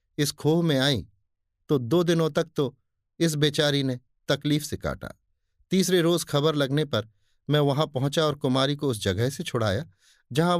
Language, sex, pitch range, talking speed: Hindi, male, 100-160 Hz, 175 wpm